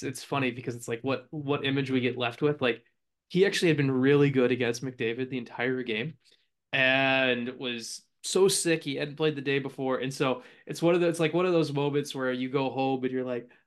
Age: 20-39